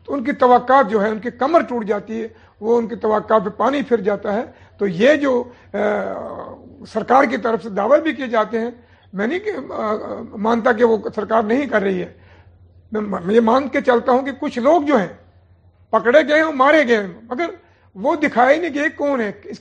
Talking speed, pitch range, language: 205 wpm, 215-265 Hz, Urdu